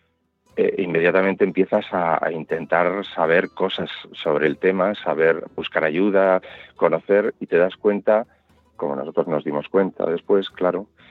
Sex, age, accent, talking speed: male, 40-59, Spanish, 130 wpm